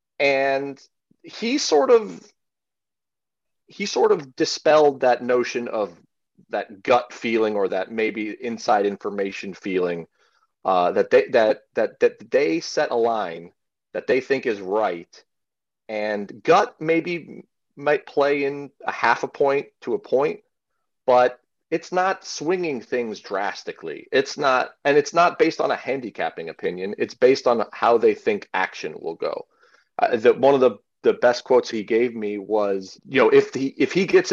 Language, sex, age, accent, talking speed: English, male, 40-59, American, 160 wpm